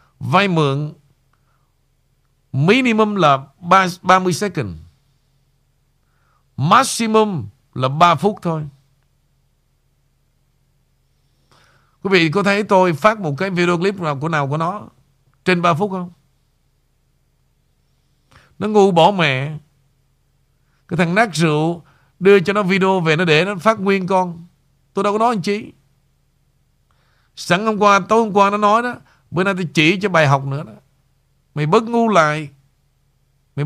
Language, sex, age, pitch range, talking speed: Vietnamese, male, 60-79, 135-185 Hz, 145 wpm